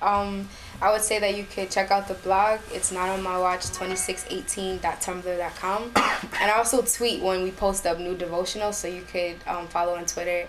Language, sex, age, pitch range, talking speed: English, female, 10-29, 175-200 Hz, 200 wpm